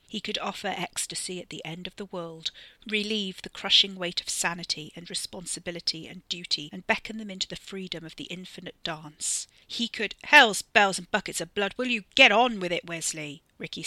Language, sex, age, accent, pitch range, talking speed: English, female, 40-59, British, 165-200 Hz, 200 wpm